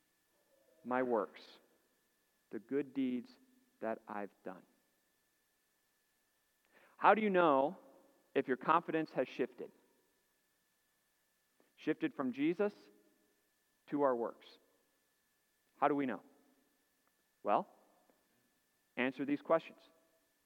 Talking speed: 90 wpm